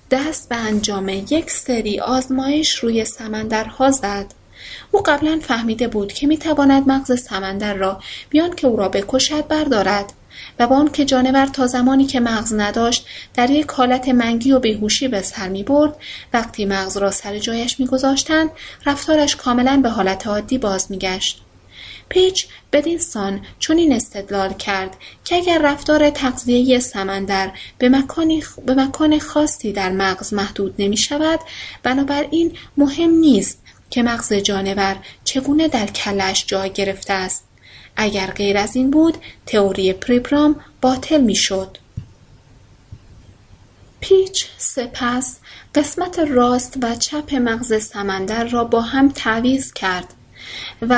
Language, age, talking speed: Persian, 30-49, 130 wpm